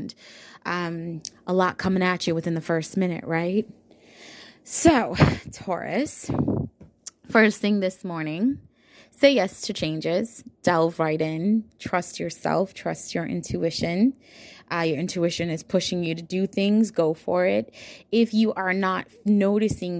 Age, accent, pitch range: 20-39, American, 165-205 Hz